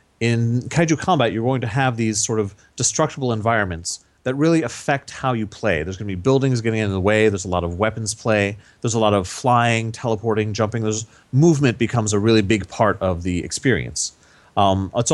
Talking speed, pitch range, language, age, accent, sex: 205 wpm, 105-130 Hz, English, 30-49, American, male